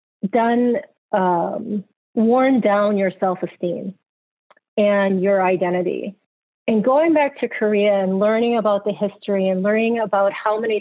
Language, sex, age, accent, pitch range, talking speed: English, female, 40-59, American, 185-220 Hz, 135 wpm